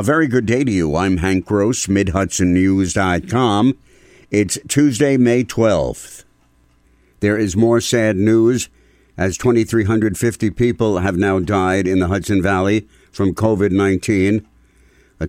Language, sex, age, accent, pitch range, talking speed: English, male, 60-79, American, 90-105 Hz, 125 wpm